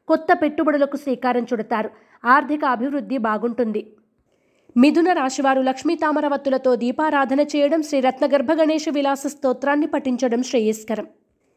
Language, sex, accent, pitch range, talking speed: Telugu, female, native, 245-305 Hz, 95 wpm